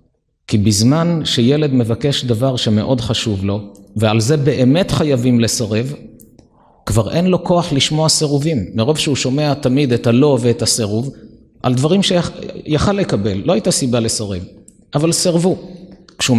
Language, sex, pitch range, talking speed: Hebrew, male, 115-145 Hz, 140 wpm